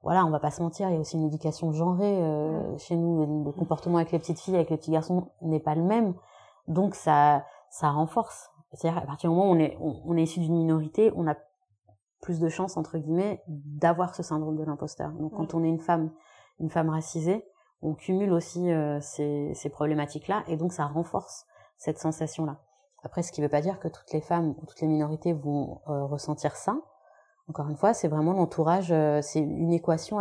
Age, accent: 30-49, French